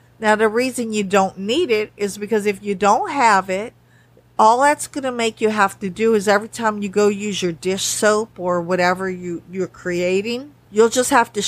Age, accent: 50-69, American